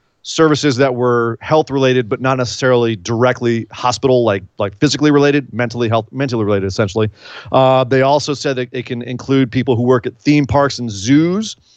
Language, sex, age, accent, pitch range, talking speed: English, male, 40-59, American, 120-145 Hz, 155 wpm